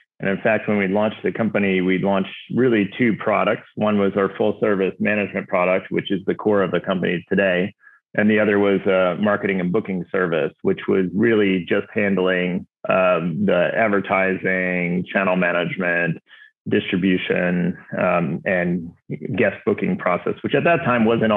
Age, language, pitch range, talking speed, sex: 30-49, English, 95-110 Hz, 165 wpm, male